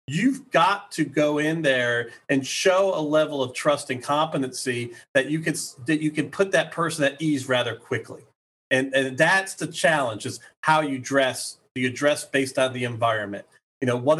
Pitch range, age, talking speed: 130-160 Hz, 40-59, 195 wpm